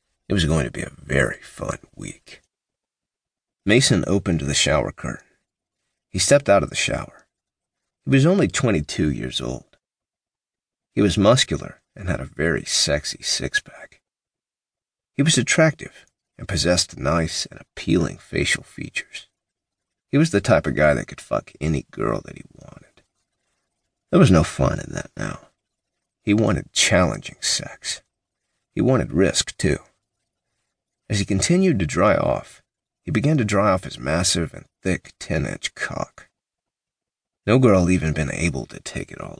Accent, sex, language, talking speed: American, male, English, 155 wpm